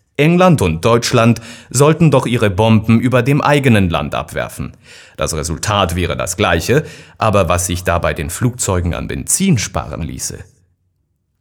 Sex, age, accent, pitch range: male, 30-49, German, 90-125 Hz